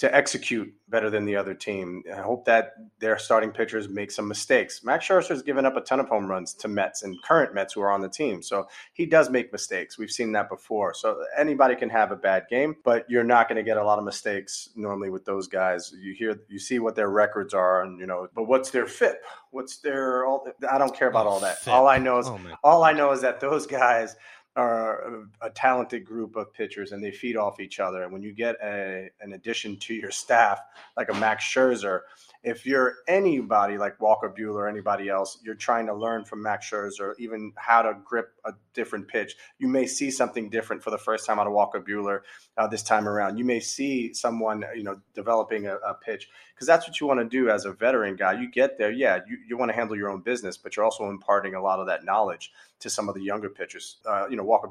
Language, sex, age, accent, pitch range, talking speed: English, male, 30-49, American, 100-125 Hz, 240 wpm